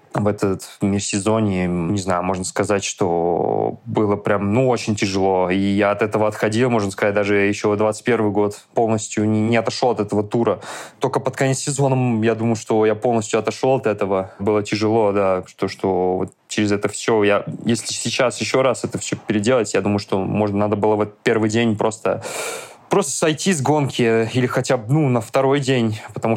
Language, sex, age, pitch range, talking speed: Russian, male, 20-39, 105-125 Hz, 185 wpm